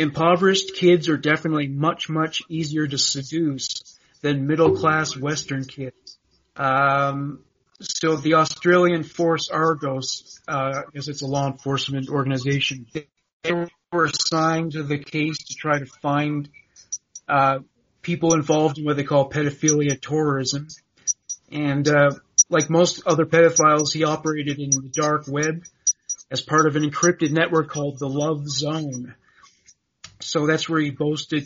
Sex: male